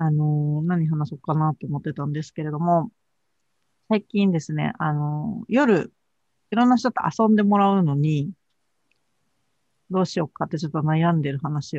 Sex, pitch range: female, 150-205 Hz